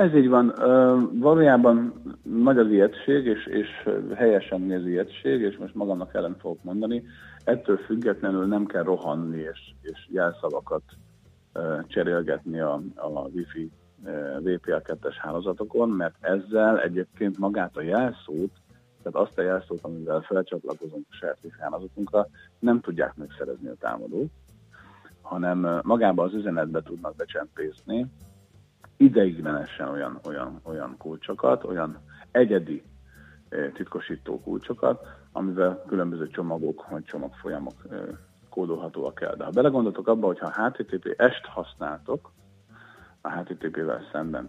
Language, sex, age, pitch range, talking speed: Hungarian, male, 50-69, 85-115 Hz, 115 wpm